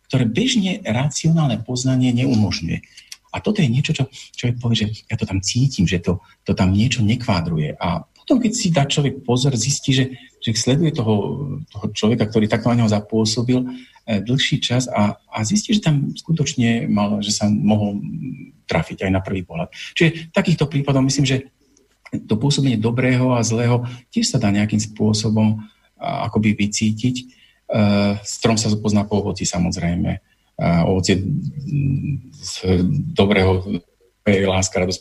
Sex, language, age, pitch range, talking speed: male, Slovak, 40-59, 100-135 Hz, 150 wpm